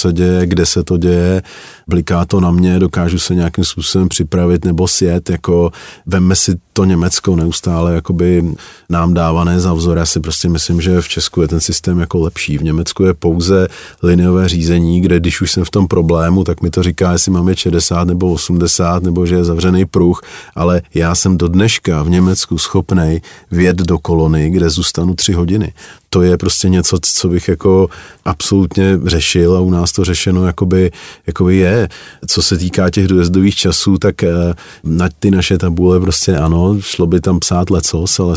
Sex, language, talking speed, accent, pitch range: male, Czech, 185 wpm, native, 85-95 Hz